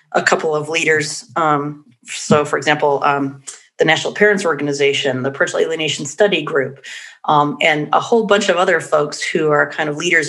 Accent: American